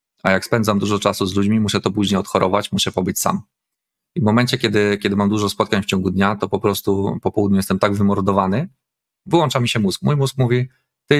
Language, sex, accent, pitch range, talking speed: Polish, male, native, 95-120 Hz, 220 wpm